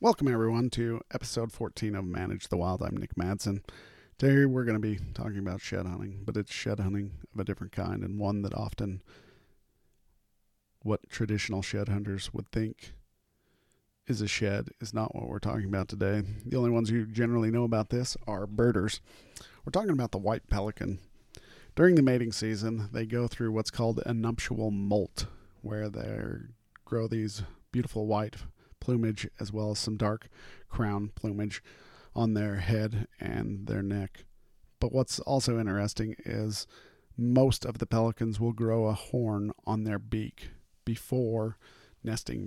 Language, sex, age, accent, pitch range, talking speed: English, male, 40-59, American, 100-120 Hz, 165 wpm